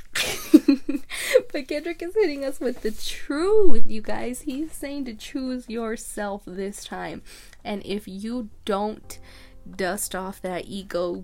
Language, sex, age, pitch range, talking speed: English, female, 20-39, 185-220 Hz, 135 wpm